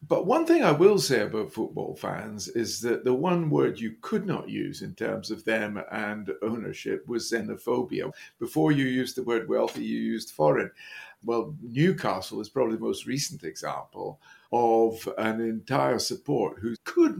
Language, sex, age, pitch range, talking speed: English, male, 50-69, 115-165 Hz, 170 wpm